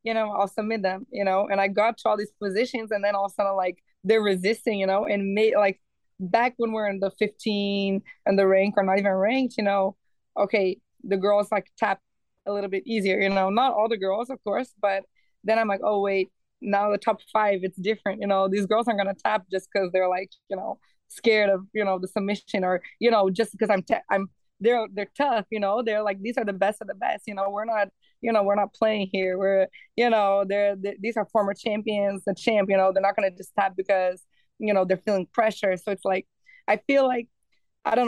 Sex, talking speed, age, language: female, 245 wpm, 20-39, English